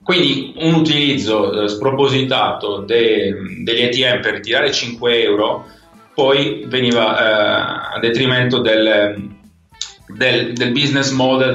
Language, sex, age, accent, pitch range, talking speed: Italian, male, 30-49, native, 100-130 Hz, 100 wpm